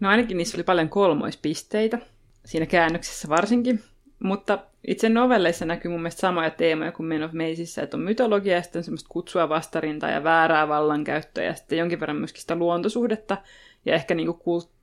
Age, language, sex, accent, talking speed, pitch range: 30-49, Finnish, female, native, 175 wpm, 165-200 Hz